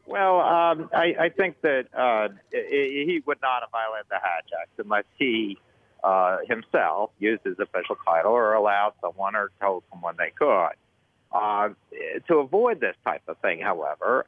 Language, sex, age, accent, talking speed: English, male, 50-69, American, 165 wpm